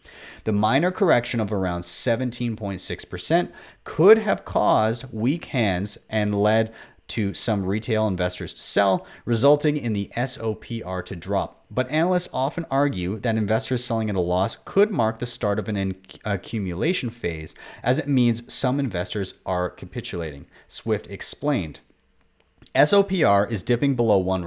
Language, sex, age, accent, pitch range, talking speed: English, male, 30-49, American, 95-125 Hz, 140 wpm